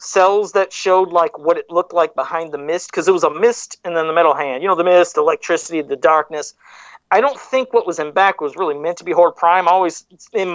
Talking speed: 255 wpm